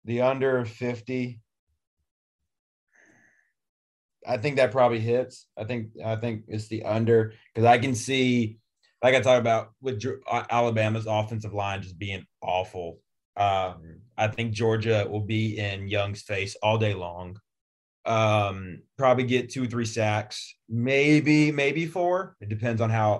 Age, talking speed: 30-49, 145 wpm